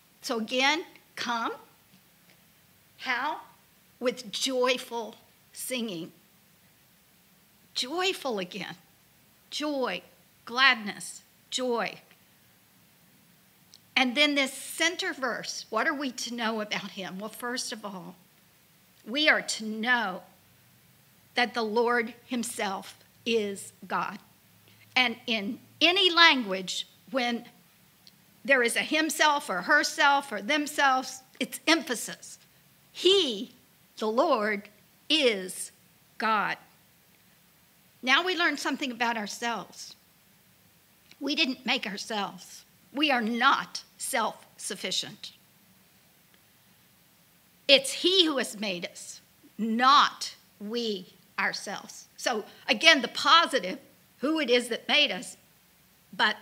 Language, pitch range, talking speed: English, 200-270 Hz, 100 wpm